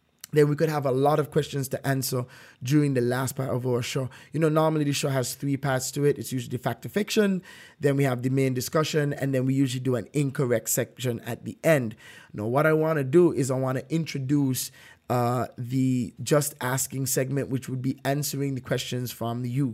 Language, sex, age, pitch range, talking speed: English, male, 20-39, 125-145 Hz, 220 wpm